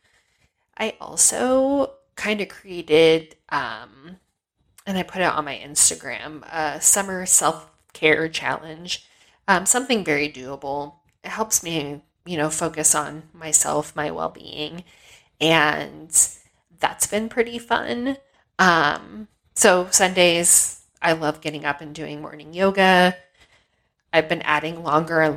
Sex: female